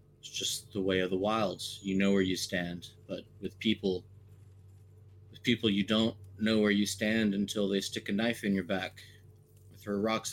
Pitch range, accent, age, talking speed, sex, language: 95-110 Hz, American, 30-49, 190 wpm, male, English